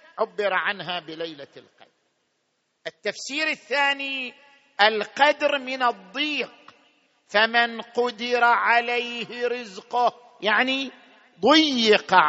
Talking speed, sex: 75 wpm, male